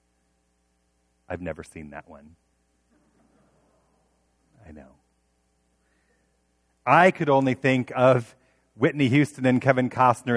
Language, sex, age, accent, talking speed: English, male, 40-59, American, 100 wpm